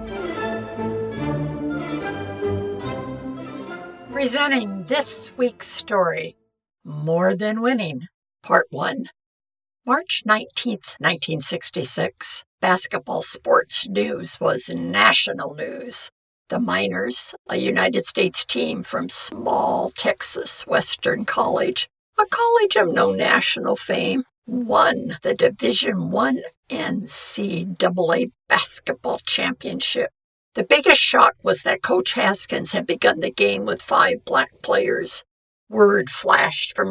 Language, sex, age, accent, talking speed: English, female, 60-79, American, 100 wpm